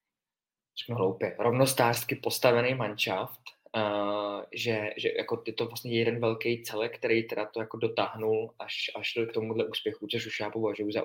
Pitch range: 105-125 Hz